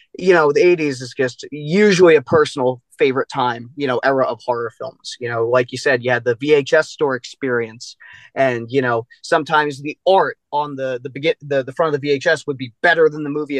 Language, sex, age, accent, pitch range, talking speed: English, male, 30-49, American, 130-185 Hz, 210 wpm